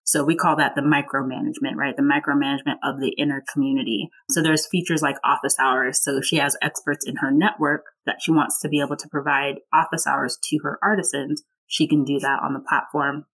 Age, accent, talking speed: 20-39, American, 205 wpm